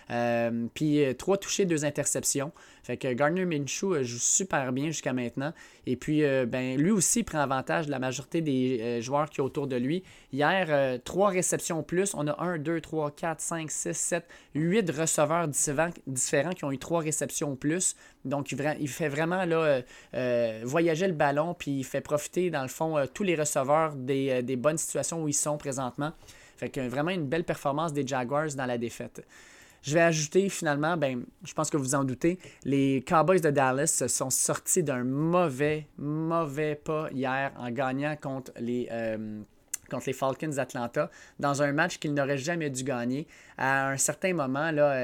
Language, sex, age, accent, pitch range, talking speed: French, male, 20-39, Canadian, 130-160 Hz, 195 wpm